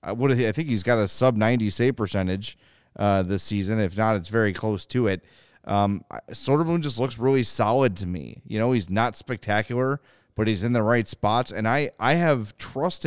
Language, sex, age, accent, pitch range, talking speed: English, male, 30-49, American, 105-135 Hz, 200 wpm